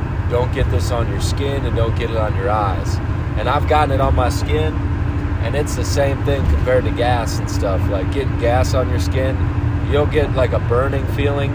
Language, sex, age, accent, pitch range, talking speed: English, male, 30-49, American, 95-105 Hz, 220 wpm